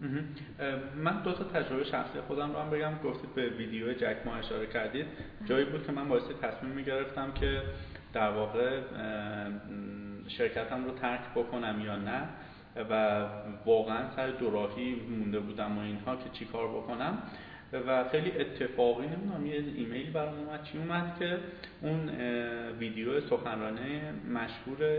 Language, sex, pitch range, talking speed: Persian, male, 120-155 Hz, 145 wpm